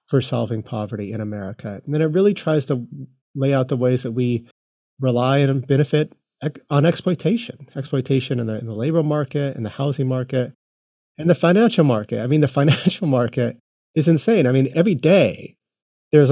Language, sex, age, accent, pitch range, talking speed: English, male, 30-49, American, 120-155 Hz, 180 wpm